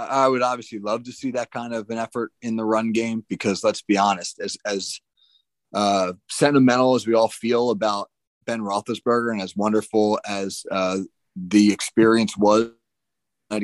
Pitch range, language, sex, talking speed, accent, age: 100-120 Hz, English, male, 170 wpm, American, 30-49